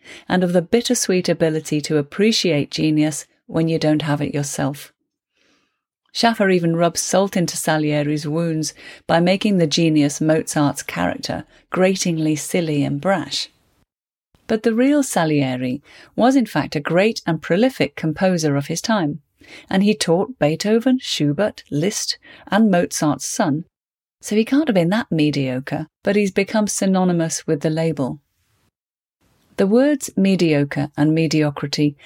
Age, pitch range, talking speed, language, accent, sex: 40-59, 150-195 Hz, 140 wpm, English, British, female